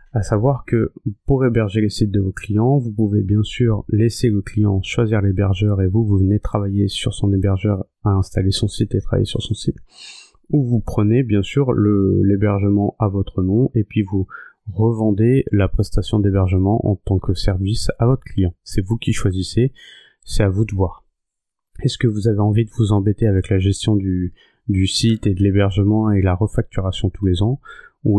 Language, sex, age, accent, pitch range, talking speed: French, male, 30-49, French, 100-115 Hz, 200 wpm